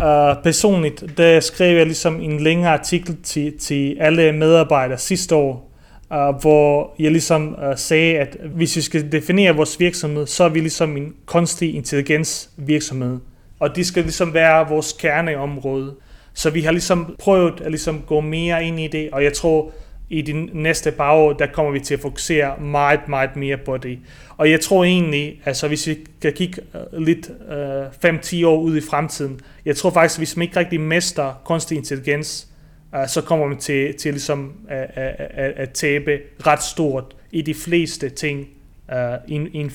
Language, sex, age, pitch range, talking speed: Danish, male, 30-49, 140-160 Hz, 170 wpm